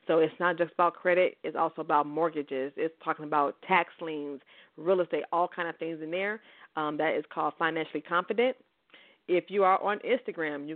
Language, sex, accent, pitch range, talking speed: English, female, American, 160-195 Hz, 195 wpm